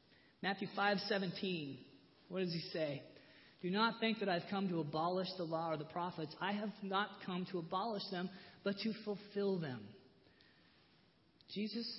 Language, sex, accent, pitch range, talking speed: English, male, American, 180-230 Hz, 160 wpm